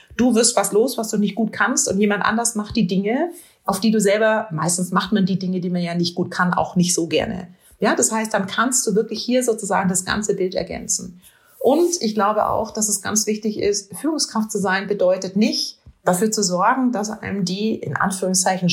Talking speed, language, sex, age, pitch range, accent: 220 wpm, German, female, 30-49, 185-220 Hz, German